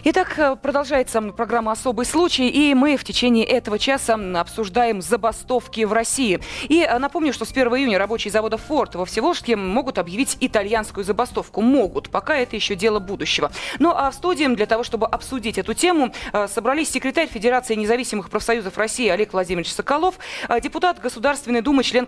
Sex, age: female, 20-39